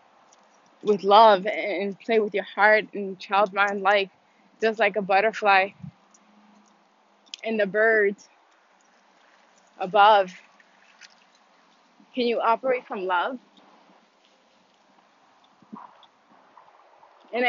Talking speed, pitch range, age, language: 85 wpm, 190-215 Hz, 20-39, English